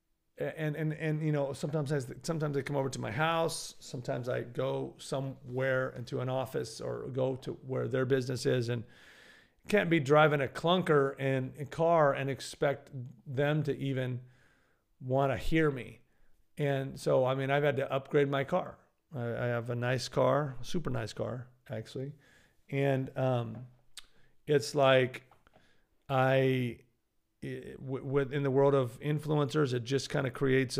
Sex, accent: male, American